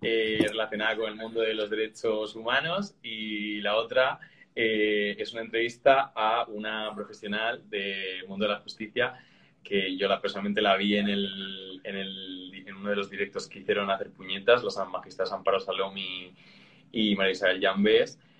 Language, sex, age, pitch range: Spanish, male, 20-39, 100-115 Hz